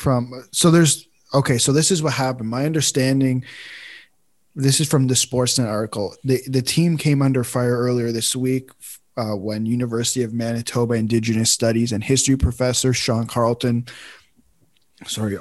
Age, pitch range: 20-39, 115-135 Hz